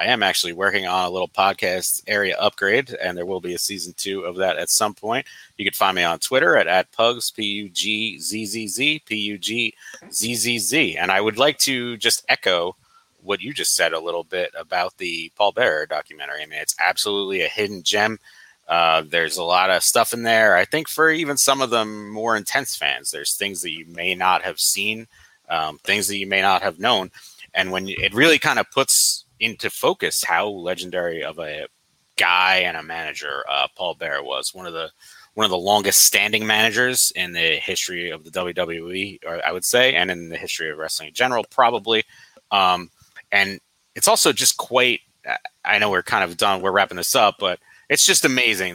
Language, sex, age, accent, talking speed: English, male, 30-49, American, 200 wpm